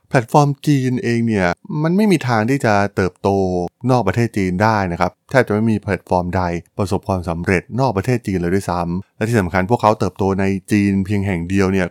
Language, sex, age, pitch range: Thai, male, 20-39, 95-120 Hz